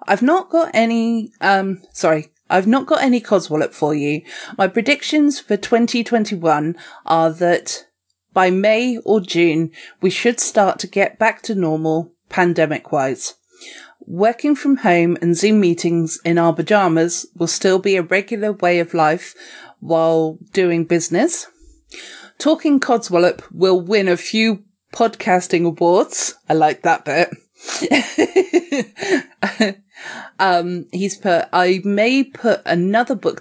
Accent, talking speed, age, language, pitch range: British, 130 wpm, 30-49, English, 170-230 Hz